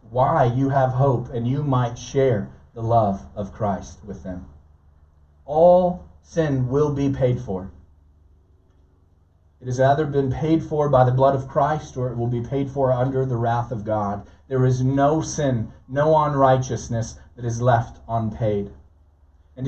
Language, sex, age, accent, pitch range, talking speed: English, male, 40-59, American, 105-140 Hz, 160 wpm